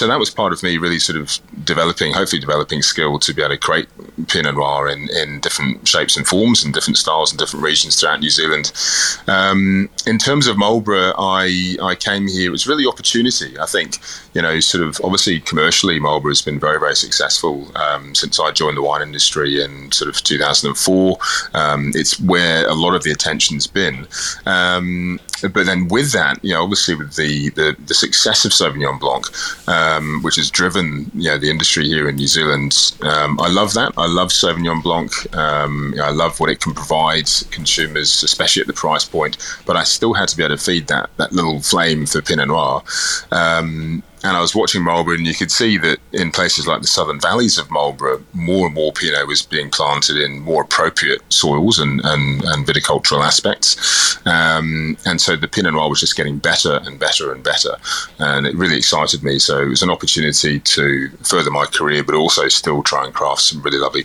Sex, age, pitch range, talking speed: male, 30-49, 75-90 Hz, 210 wpm